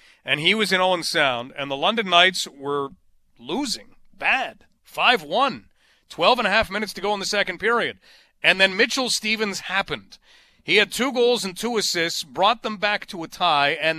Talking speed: 190 wpm